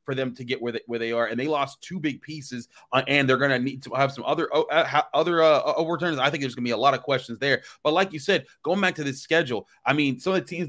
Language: English